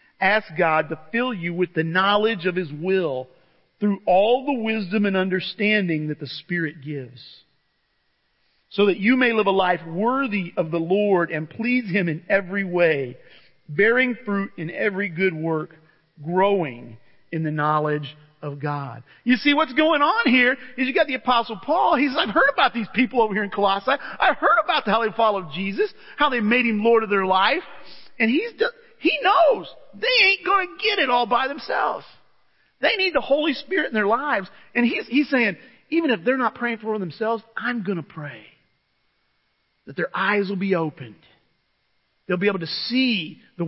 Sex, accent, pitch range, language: male, American, 180-255 Hz, English